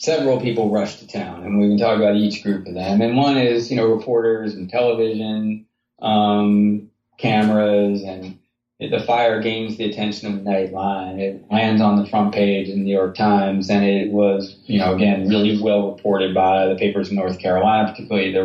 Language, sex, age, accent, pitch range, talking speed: English, male, 30-49, American, 95-115 Hz, 200 wpm